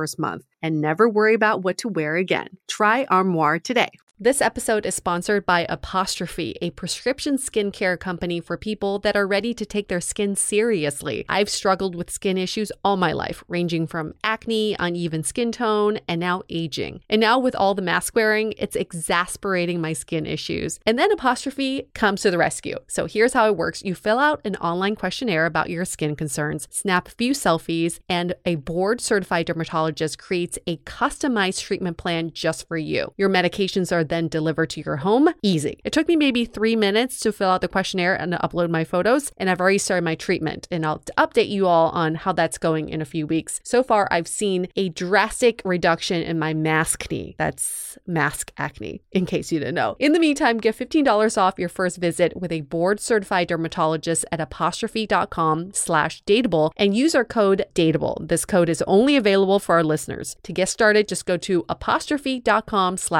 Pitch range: 170-215 Hz